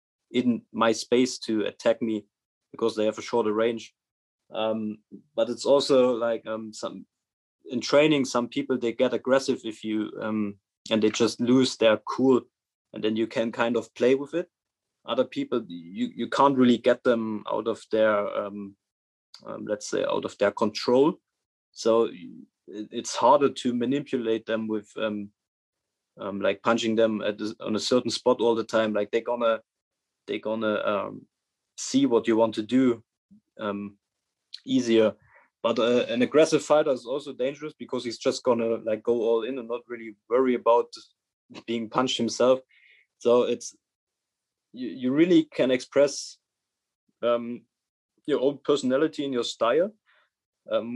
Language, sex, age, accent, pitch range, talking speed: English, male, 20-39, German, 110-130 Hz, 160 wpm